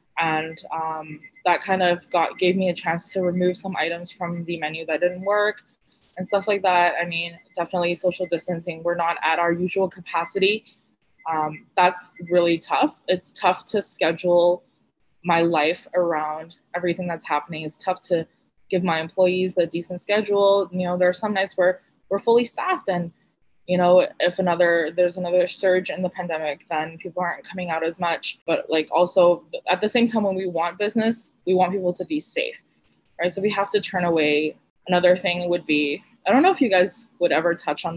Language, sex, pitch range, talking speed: English, female, 160-185 Hz, 195 wpm